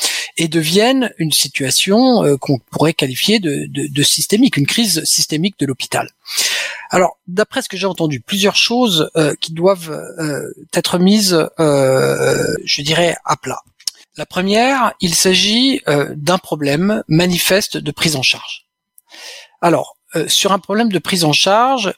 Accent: French